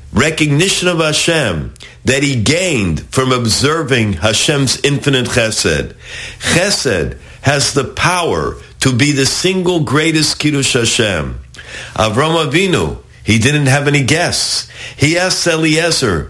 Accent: American